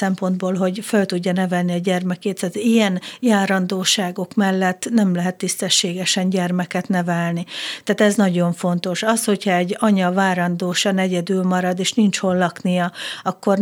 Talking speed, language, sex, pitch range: 145 wpm, Hungarian, female, 185-210 Hz